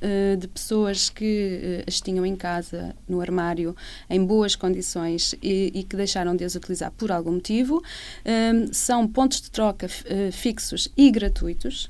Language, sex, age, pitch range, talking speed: Portuguese, female, 20-39, 180-220 Hz, 155 wpm